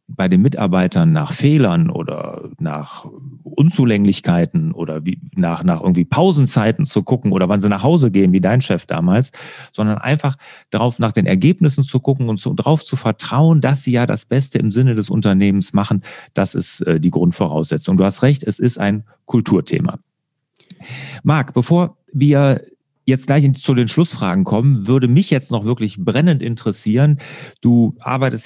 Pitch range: 110-155 Hz